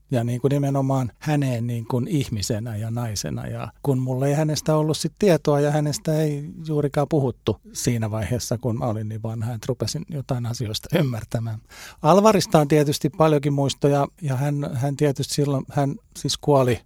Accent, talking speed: native, 170 wpm